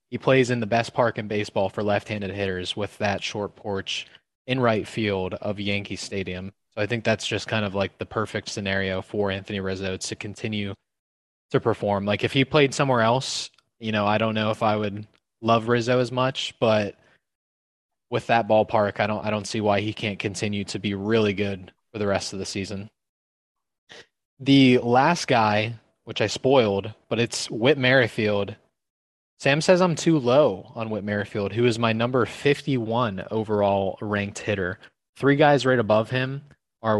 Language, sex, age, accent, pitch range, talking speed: English, male, 20-39, American, 100-120 Hz, 180 wpm